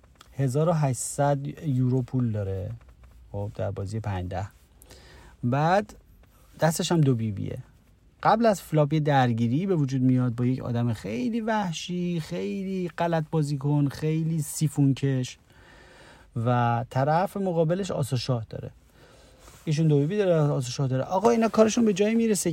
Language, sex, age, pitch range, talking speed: Persian, male, 30-49, 125-175 Hz, 135 wpm